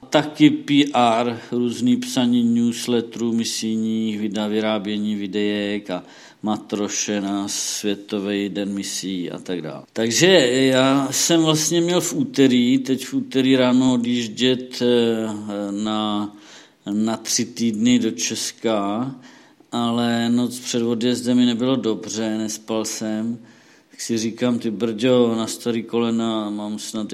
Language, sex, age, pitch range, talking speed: Czech, male, 50-69, 105-130 Hz, 120 wpm